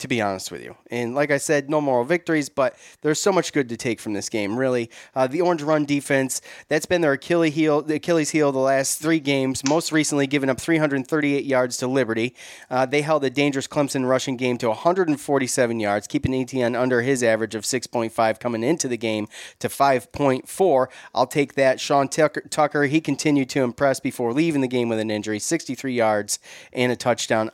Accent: American